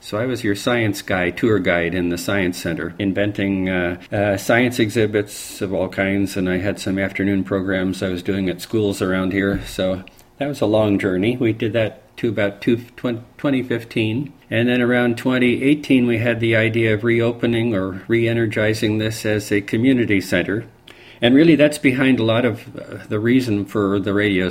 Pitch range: 100-115 Hz